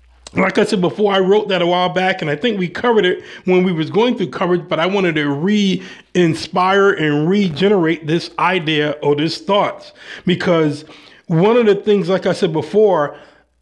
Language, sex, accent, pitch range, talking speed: English, male, American, 160-200 Hz, 190 wpm